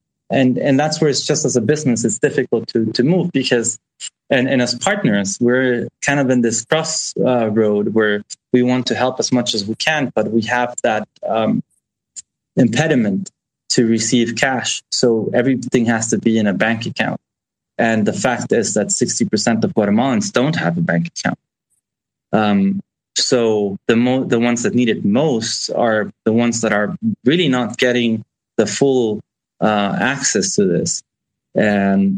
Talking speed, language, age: 175 wpm, English, 20-39